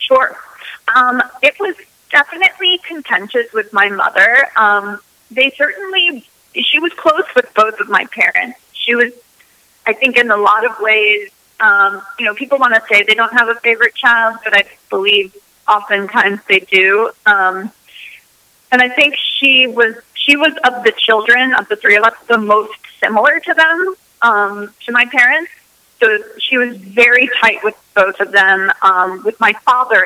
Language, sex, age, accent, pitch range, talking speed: English, female, 30-49, American, 205-255 Hz, 170 wpm